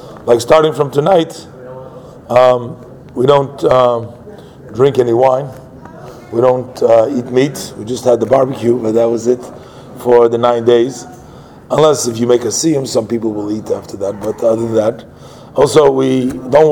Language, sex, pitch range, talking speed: English, male, 120-150 Hz, 170 wpm